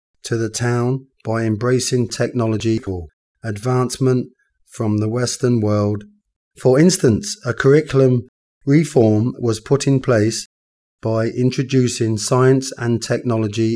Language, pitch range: Thai, 105-130 Hz